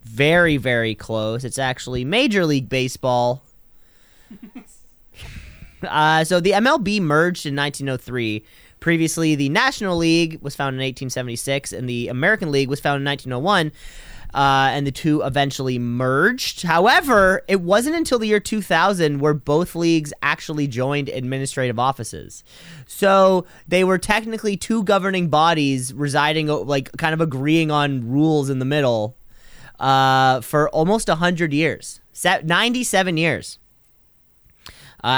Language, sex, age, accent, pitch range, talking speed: English, male, 20-39, American, 130-175 Hz, 130 wpm